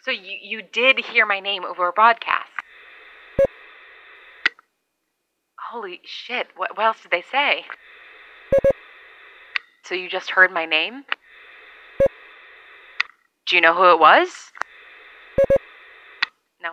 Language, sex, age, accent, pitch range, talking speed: English, female, 20-39, American, 170-250 Hz, 110 wpm